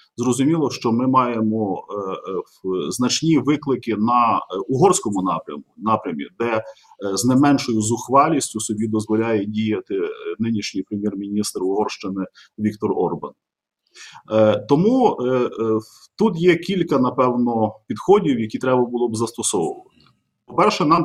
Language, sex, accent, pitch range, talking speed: Ukrainian, male, native, 115-155 Hz, 125 wpm